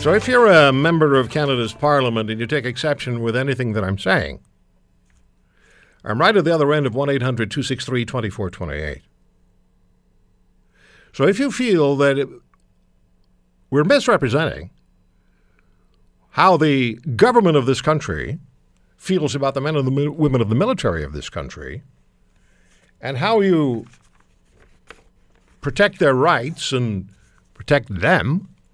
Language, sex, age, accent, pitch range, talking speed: English, male, 60-79, American, 95-145 Hz, 125 wpm